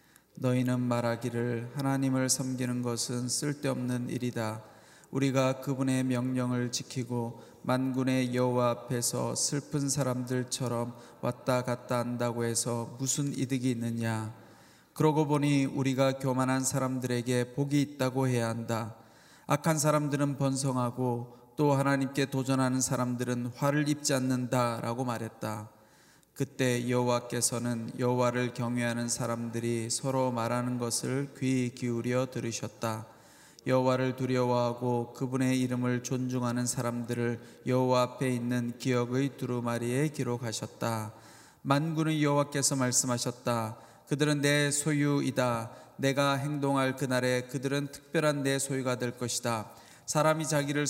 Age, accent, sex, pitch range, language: 20-39, native, male, 120-135 Hz, Korean